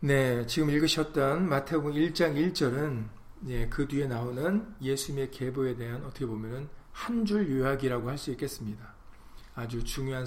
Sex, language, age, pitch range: male, Korean, 40-59, 115-150 Hz